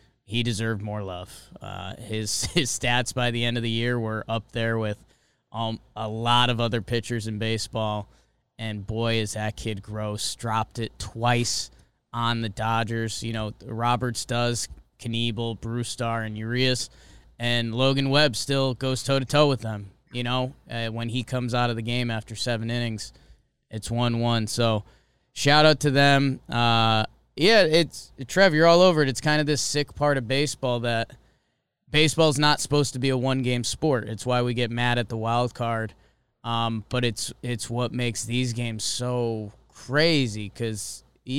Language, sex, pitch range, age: English, male, 115-135 Hz, 20-39